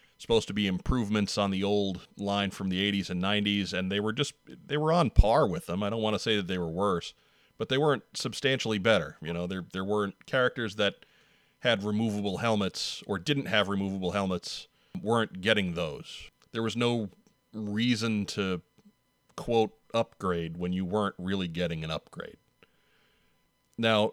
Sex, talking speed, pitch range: male, 175 wpm, 90-115 Hz